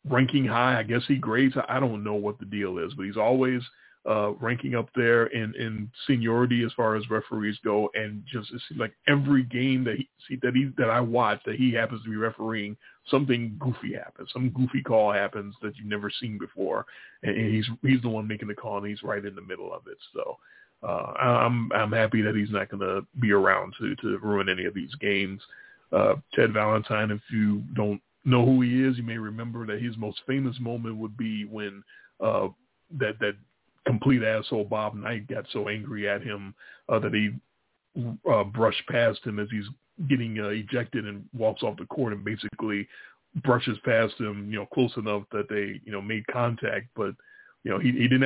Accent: American